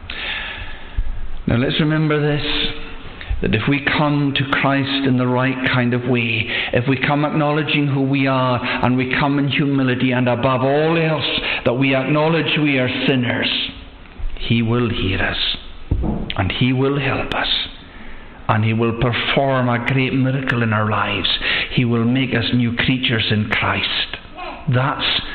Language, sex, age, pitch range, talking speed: English, male, 60-79, 120-150 Hz, 155 wpm